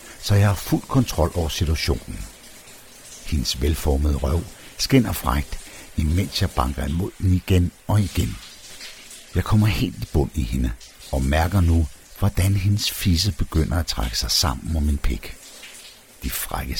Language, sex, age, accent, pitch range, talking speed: Danish, male, 60-79, native, 75-95 Hz, 155 wpm